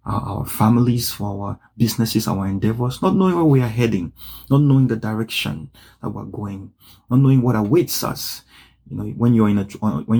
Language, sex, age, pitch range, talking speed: English, male, 30-49, 105-125 Hz, 190 wpm